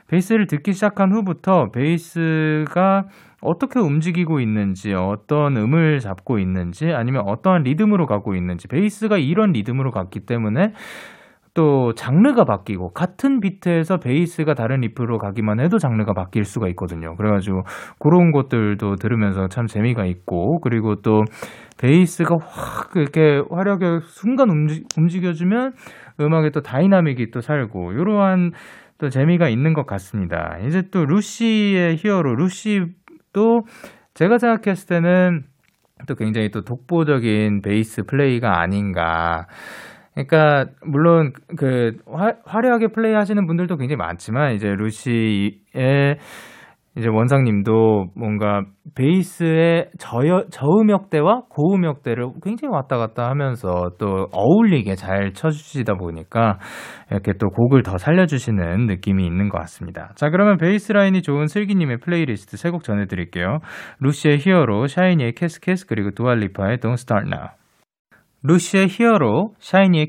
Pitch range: 110-180 Hz